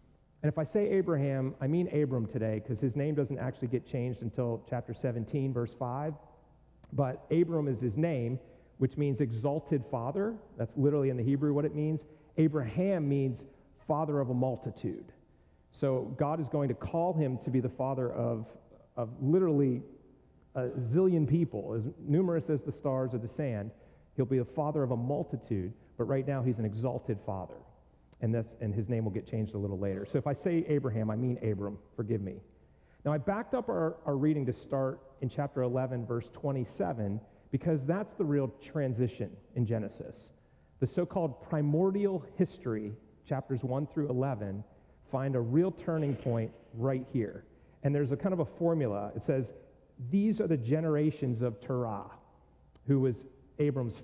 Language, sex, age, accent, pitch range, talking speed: English, male, 40-59, American, 120-150 Hz, 175 wpm